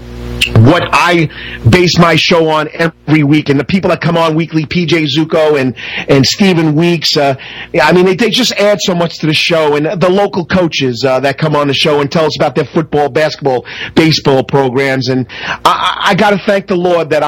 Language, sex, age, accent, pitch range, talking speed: English, male, 40-59, American, 140-175 Hz, 210 wpm